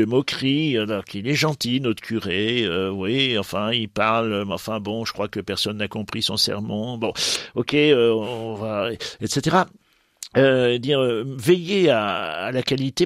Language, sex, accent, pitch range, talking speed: French, male, French, 100-130 Hz, 170 wpm